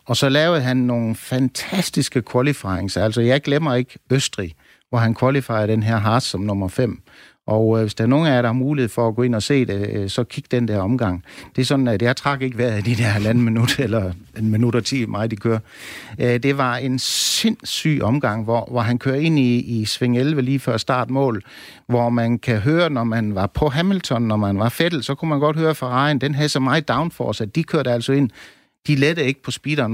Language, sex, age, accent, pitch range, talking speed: Danish, male, 60-79, native, 115-140 Hz, 245 wpm